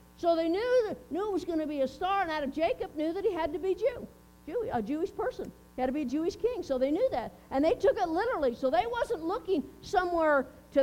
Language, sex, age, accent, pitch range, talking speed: English, female, 50-69, American, 295-405 Hz, 270 wpm